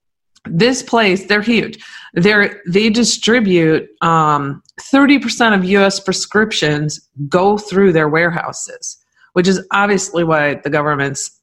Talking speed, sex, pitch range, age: 115 wpm, female, 165-205 Hz, 40-59